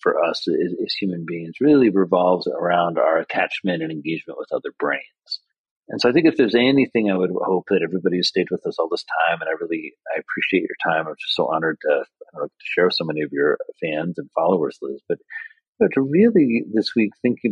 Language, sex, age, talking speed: English, male, 40-59, 235 wpm